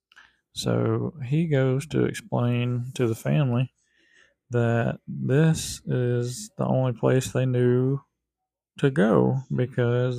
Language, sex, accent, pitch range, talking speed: English, male, American, 115-130 Hz, 110 wpm